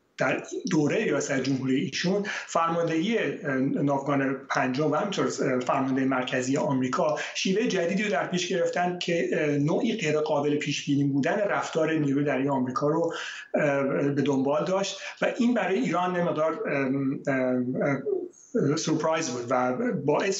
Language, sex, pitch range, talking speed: Persian, male, 140-180 Hz, 125 wpm